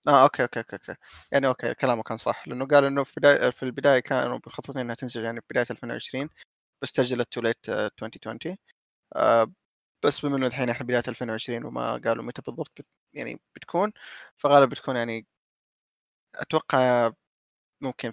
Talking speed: 160 wpm